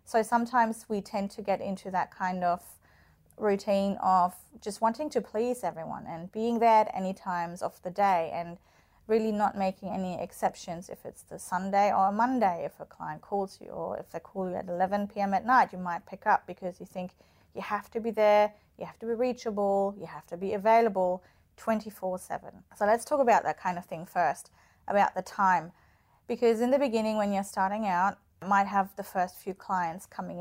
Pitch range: 180-210 Hz